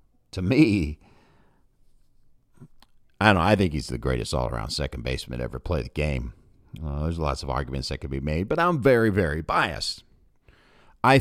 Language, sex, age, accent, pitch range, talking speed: English, male, 50-69, American, 75-115 Hz, 175 wpm